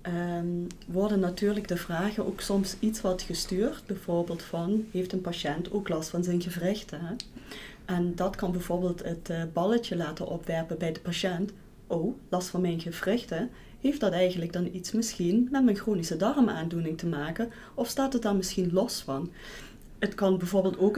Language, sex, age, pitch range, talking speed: Dutch, female, 30-49, 175-205 Hz, 170 wpm